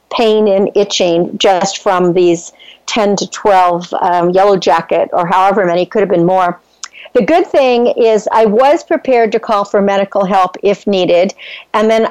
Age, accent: 50-69, American